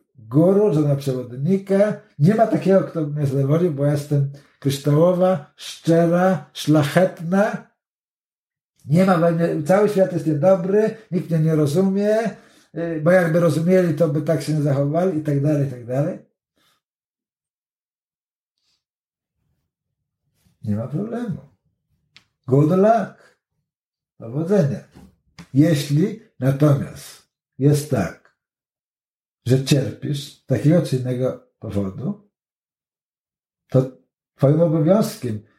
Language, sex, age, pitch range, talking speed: Polish, male, 60-79, 135-170 Hz, 100 wpm